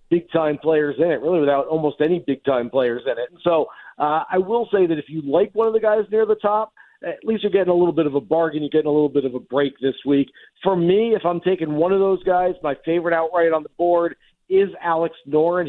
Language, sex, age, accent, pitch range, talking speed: English, male, 40-59, American, 150-185 Hz, 255 wpm